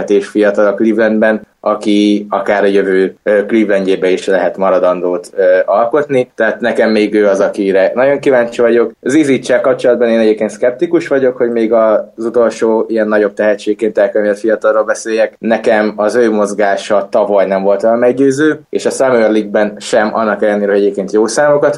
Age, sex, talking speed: 20-39, male, 155 wpm